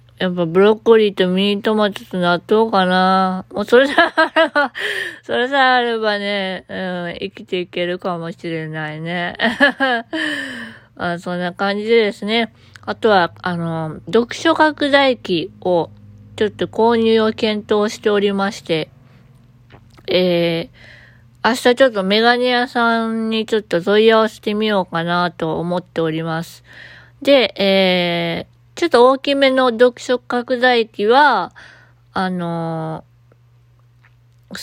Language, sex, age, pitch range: Japanese, female, 20-39, 170-235 Hz